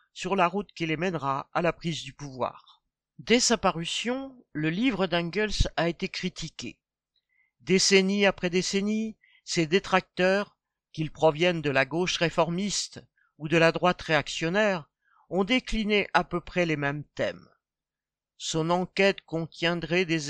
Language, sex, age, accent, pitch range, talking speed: French, male, 50-69, French, 155-195 Hz, 140 wpm